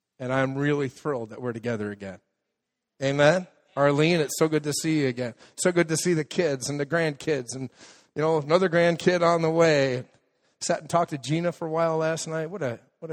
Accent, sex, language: American, male, English